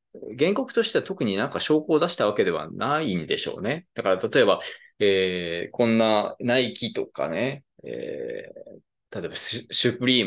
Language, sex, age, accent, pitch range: Japanese, male, 20-39, native, 105-170 Hz